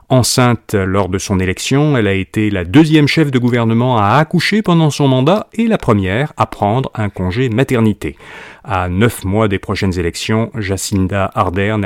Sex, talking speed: male, 170 wpm